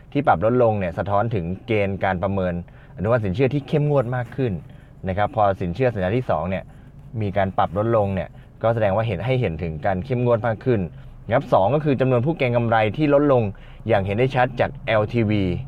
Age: 20-39